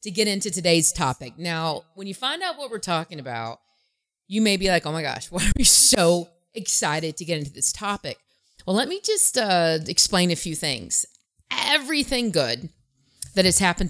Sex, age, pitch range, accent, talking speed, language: female, 30-49, 160-220 Hz, American, 195 wpm, English